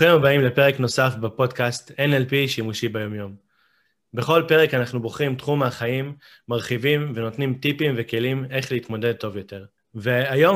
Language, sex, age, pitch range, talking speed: Hebrew, male, 20-39, 120-145 Hz, 130 wpm